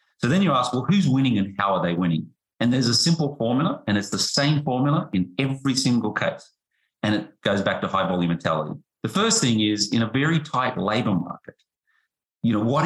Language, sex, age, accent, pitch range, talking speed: English, male, 40-59, Australian, 95-135 Hz, 220 wpm